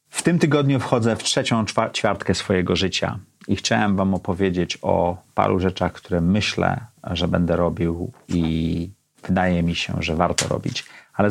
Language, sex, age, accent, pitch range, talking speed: Polish, male, 40-59, native, 90-125 Hz, 155 wpm